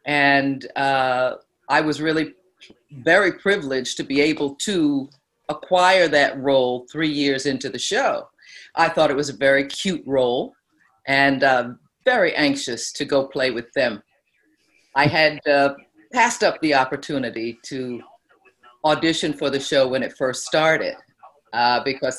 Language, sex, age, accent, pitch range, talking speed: English, female, 50-69, American, 140-185 Hz, 145 wpm